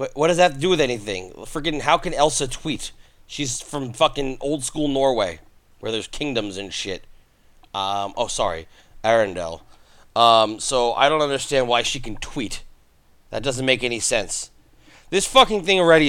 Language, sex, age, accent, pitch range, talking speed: English, male, 30-49, American, 105-145 Hz, 170 wpm